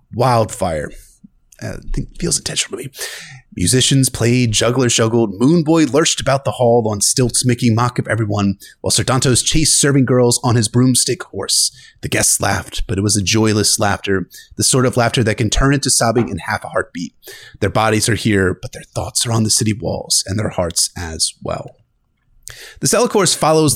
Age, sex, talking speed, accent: 30-49, male, 190 wpm, American